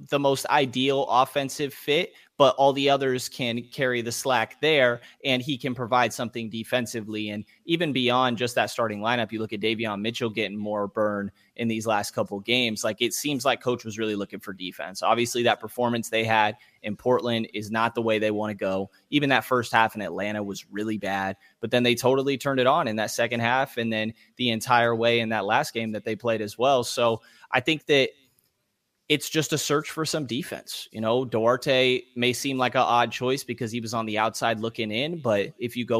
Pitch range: 110-130 Hz